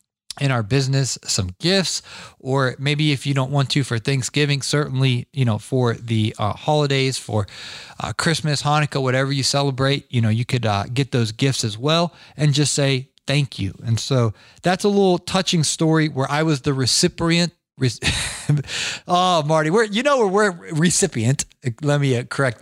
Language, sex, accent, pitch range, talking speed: English, male, American, 120-155 Hz, 180 wpm